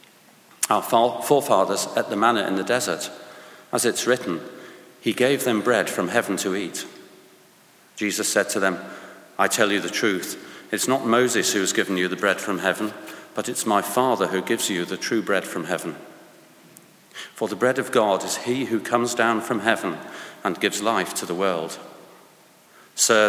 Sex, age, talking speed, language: male, 40-59, 180 wpm, English